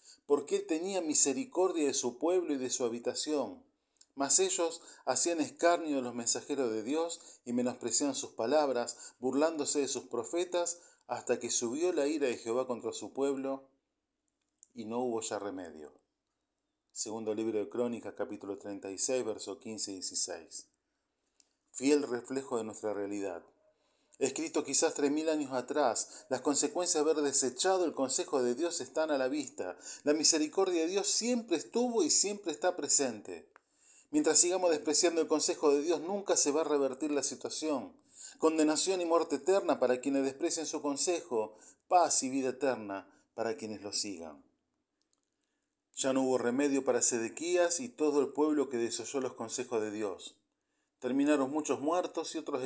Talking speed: 160 wpm